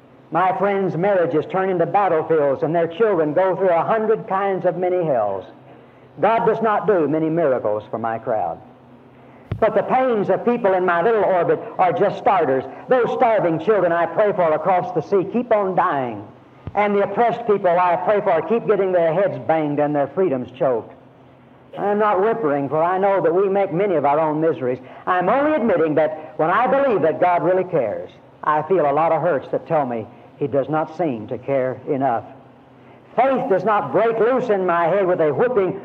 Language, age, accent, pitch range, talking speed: English, 60-79, American, 135-190 Hz, 200 wpm